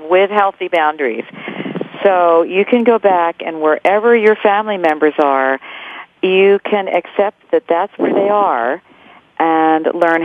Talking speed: 140 wpm